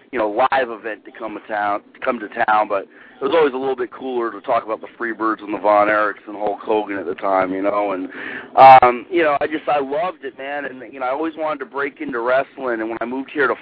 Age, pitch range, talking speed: 40-59, 105-130 Hz, 280 wpm